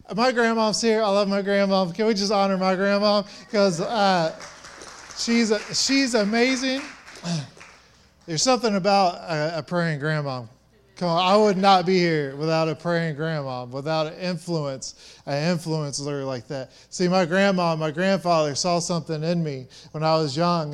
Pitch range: 150-185 Hz